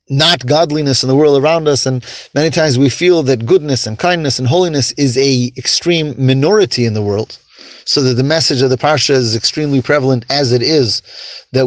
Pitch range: 130-175 Hz